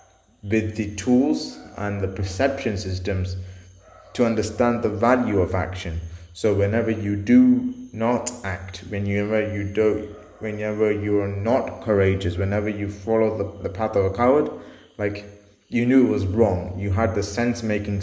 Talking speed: 150 wpm